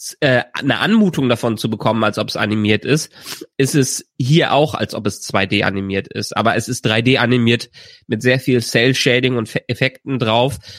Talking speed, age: 180 wpm, 30-49